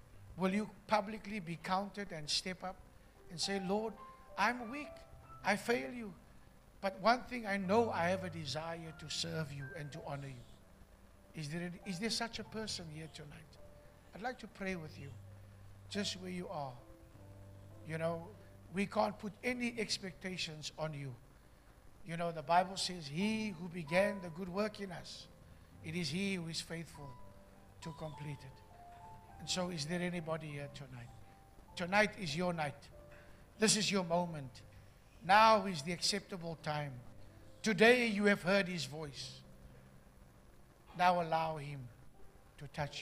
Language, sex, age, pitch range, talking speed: English, male, 60-79, 125-195 Hz, 160 wpm